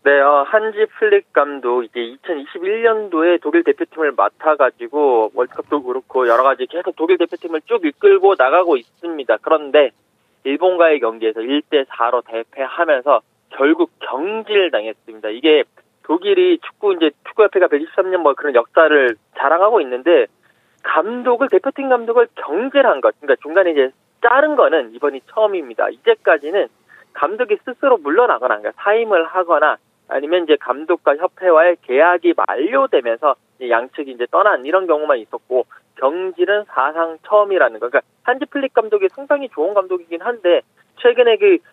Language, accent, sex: Korean, native, male